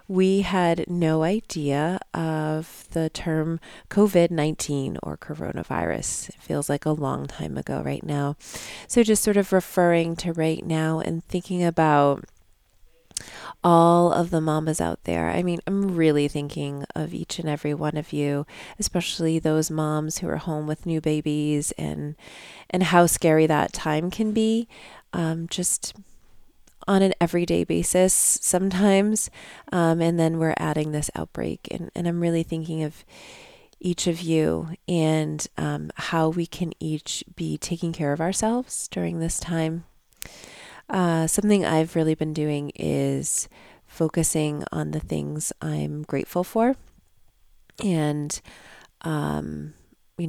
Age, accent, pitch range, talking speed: 30-49, American, 145-175 Hz, 140 wpm